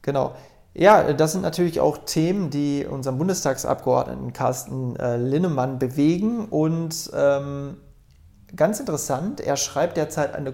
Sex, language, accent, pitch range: male, German, German, 130-155 Hz